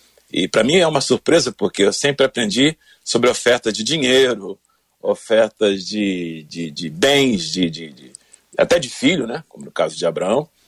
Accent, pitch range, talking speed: Brazilian, 130-210 Hz, 175 wpm